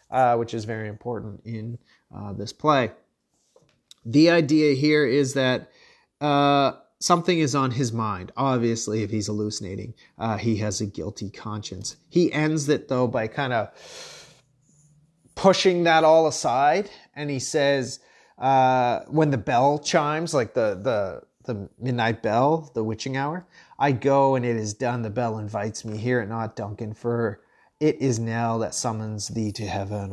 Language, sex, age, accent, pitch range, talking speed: English, male, 30-49, American, 115-140 Hz, 160 wpm